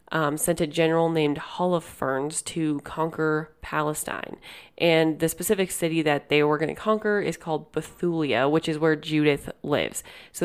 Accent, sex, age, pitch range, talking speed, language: American, female, 30-49, 150-170 Hz, 160 wpm, English